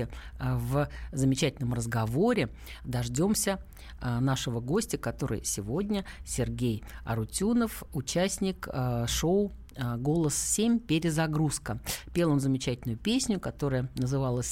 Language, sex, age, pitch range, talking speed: Russian, female, 50-69, 120-175 Hz, 100 wpm